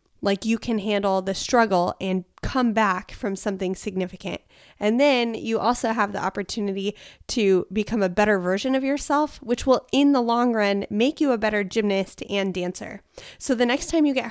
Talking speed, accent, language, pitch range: 190 wpm, American, English, 195-240 Hz